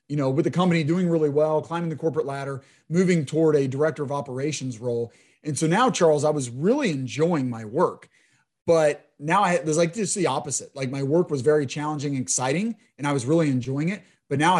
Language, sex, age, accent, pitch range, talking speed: English, male, 30-49, American, 135-170 Hz, 220 wpm